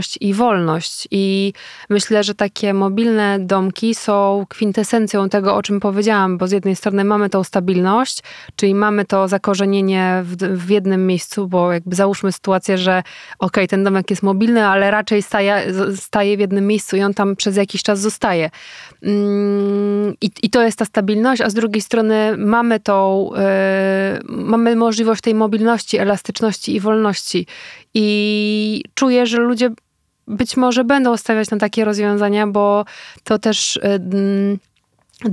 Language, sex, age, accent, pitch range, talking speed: Polish, female, 20-39, native, 195-220 Hz, 145 wpm